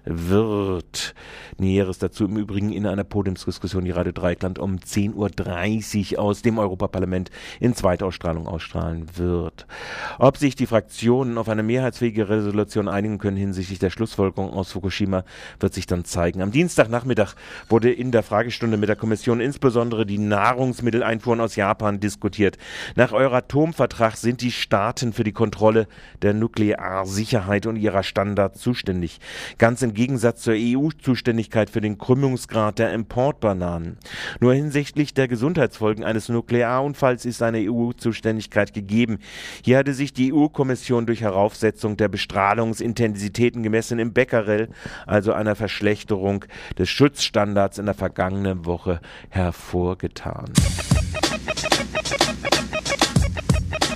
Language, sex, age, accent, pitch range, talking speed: German, male, 40-59, German, 100-120 Hz, 125 wpm